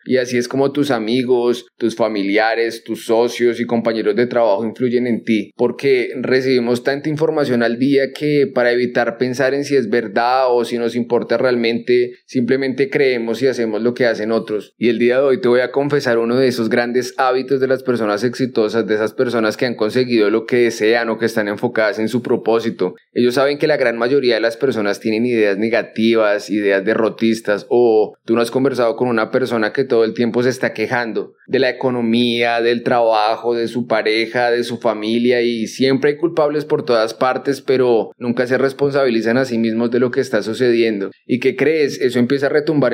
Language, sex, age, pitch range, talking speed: Spanish, male, 20-39, 115-130 Hz, 205 wpm